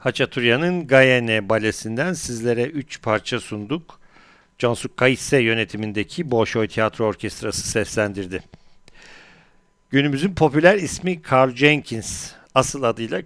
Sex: male